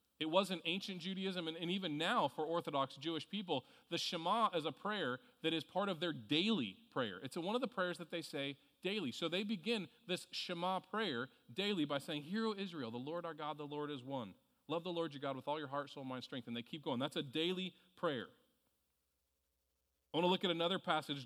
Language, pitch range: English, 130-180 Hz